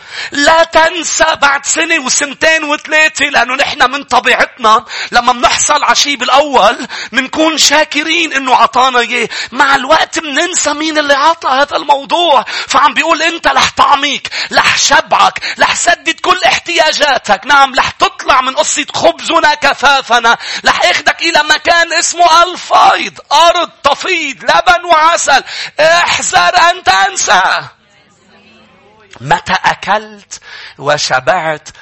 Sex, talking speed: male, 115 wpm